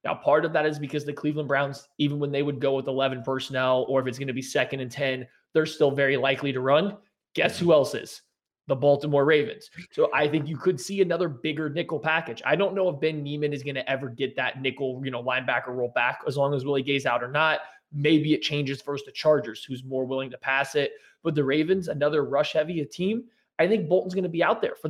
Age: 20-39